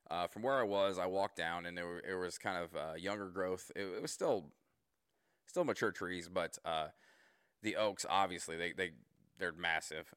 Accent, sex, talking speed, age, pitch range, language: American, male, 200 wpm, 30-49, 85-95 Hz, English